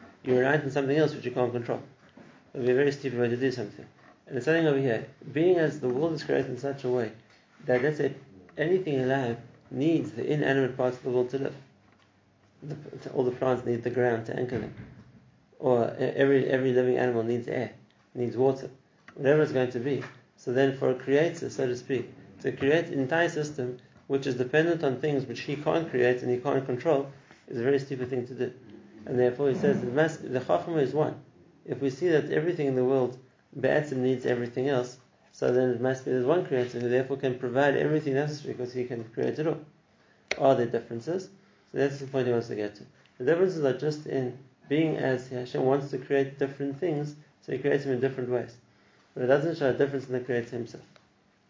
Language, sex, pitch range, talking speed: English, male, 125-145 Hz, 220 wpm